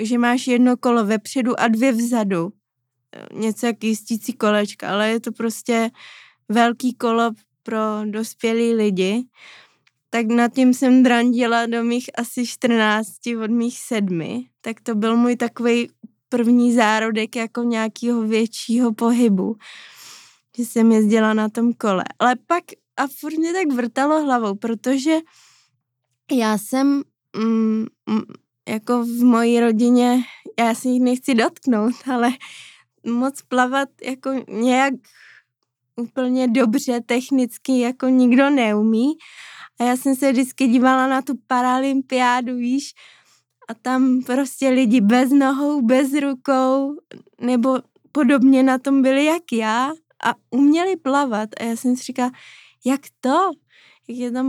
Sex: female